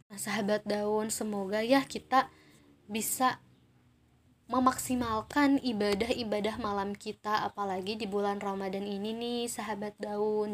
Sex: female